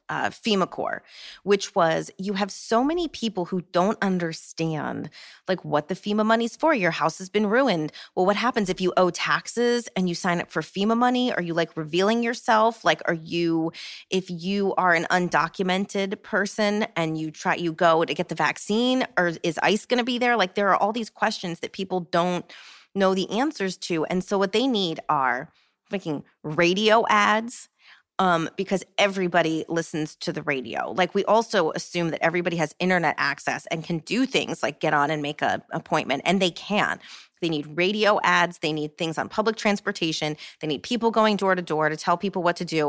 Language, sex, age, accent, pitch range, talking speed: English, female, 30-49, American, 165-210 Hz, 200 wpm